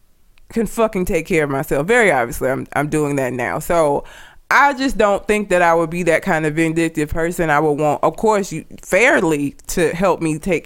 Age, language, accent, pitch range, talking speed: 20-39, English, American, 165-260 Hz, 215 wpm